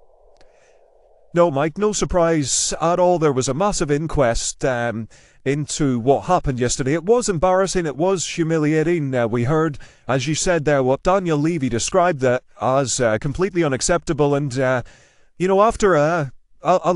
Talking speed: 165 wpm